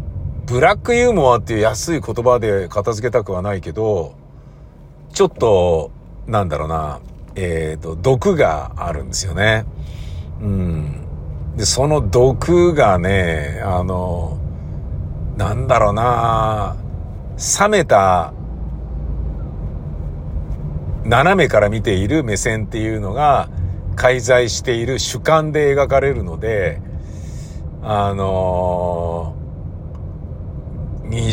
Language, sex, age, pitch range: Japanese, male, 50-69, 85-125 Hz